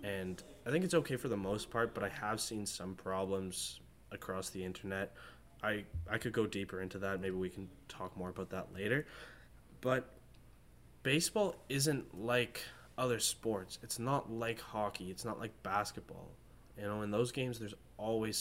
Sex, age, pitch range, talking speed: male, 20-39, 95-120 Hz, 175 wpm